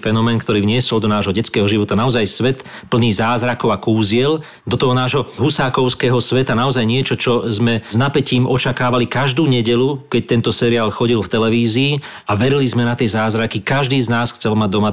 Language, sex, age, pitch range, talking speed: Slovak, male, 40-59, 105-125 Hz, 180 wpm